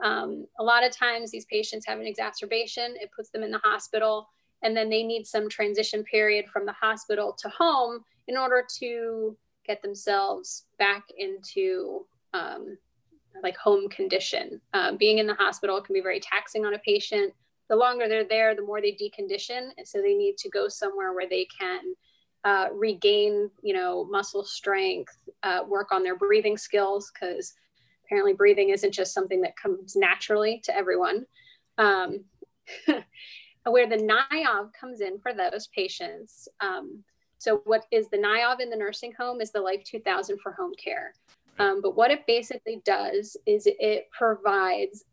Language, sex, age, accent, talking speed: English, female, 30-49, American, 170 wpm